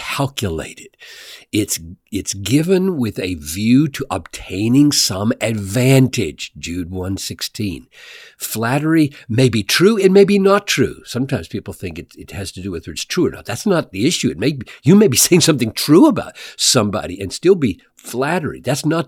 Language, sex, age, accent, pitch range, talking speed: English, male, 60-79, American, 110-170 Hz, 180 wpm